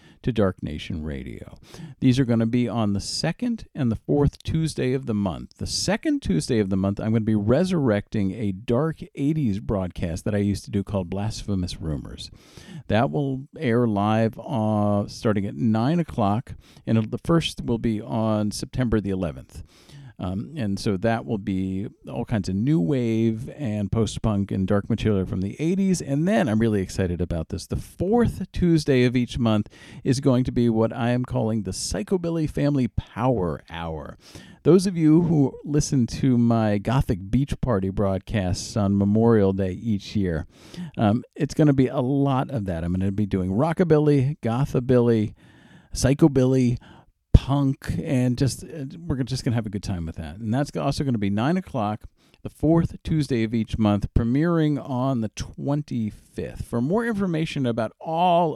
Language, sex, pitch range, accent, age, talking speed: English, male, 100-140 Hz, American, 50-69, 175 wpm